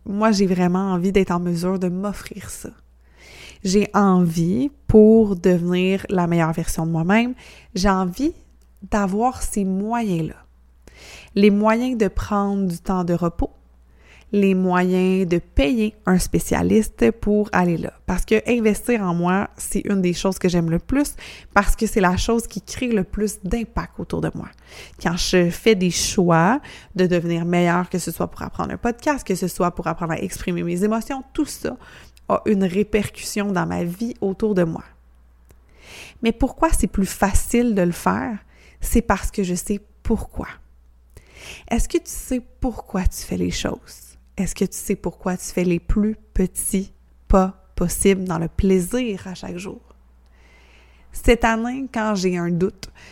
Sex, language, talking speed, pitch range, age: female, French, 170 wpm, 175-210 Hz, 20-39